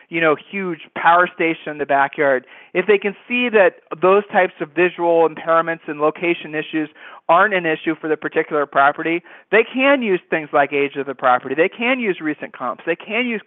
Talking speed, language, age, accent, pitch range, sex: 200 wpm, English, 40-59, American, 155-200 Hz, male